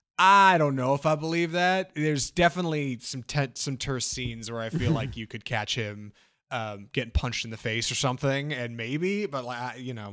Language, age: English, 20-39